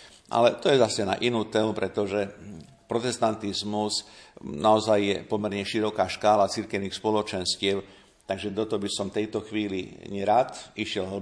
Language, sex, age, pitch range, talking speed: Slovak, male, 50-69, 100-110 Hz, 135 wpm